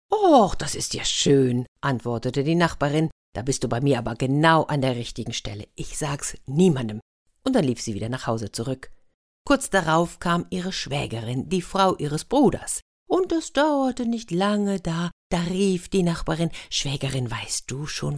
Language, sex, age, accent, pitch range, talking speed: German, female, 50-69, German, 130-180 Hz, 175 wpm